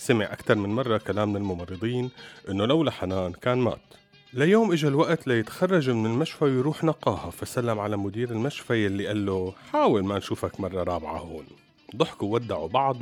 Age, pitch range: 40-59, 95-145 Hz